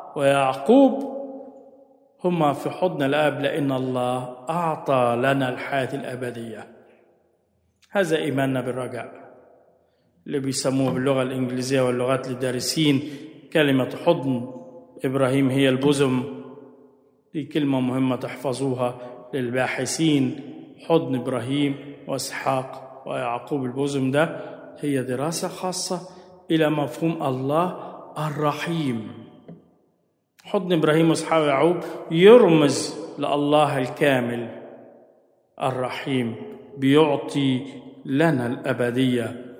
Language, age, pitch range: Arabic, 50-69, 130-165 Hz